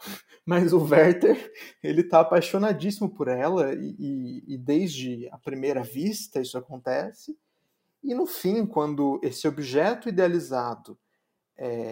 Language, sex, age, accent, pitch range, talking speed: Portuguese, male, 30-49, Brazilian, 135-190 Hz, 110 wpm